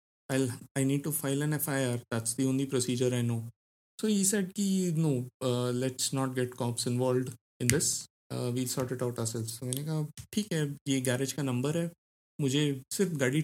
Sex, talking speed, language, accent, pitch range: male, 195 wpm, Hindi, native, 120-140 Hz